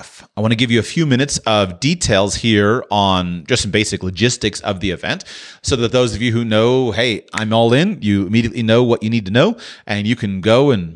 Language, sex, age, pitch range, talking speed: English, male, 30-49, 105-125 Hz, 235 wpm